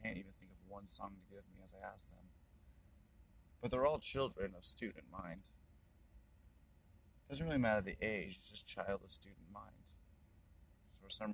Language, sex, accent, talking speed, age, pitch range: English, male, American, 180 wpm, 30-49, 85-110 Hz